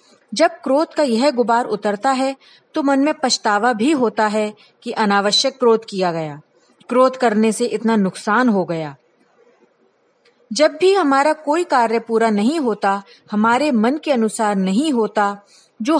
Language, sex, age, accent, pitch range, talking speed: Hindi, female, 30-49, native, 215-290 Hz, 155 wpm